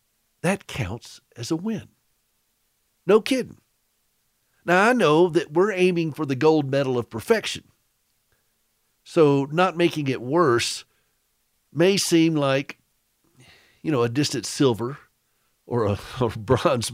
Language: English